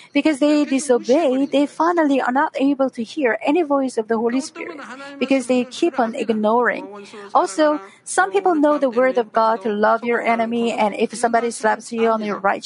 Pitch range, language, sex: 230-300 Hz, Korean, female